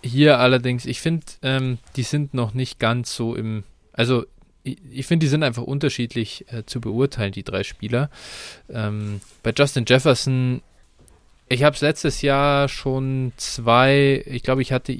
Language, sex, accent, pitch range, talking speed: German, male, German, 115-140 Hz, 165 wpm